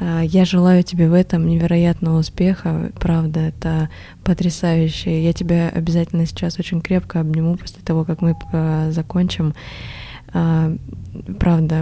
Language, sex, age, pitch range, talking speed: Russian, female, 20-39, 155-170 Hz, 115 wpm